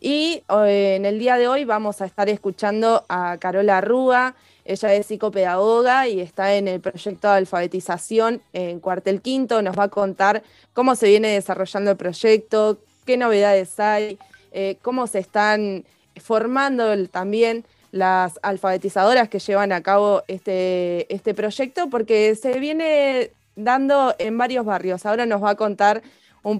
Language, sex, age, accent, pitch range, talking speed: Spanish, female, 20-39, Argentinian, 195-230 Hz, 150 wpm